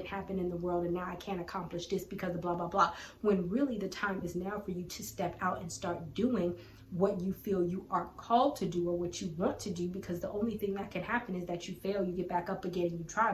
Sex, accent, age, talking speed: female, American, 20-39, 275 wpm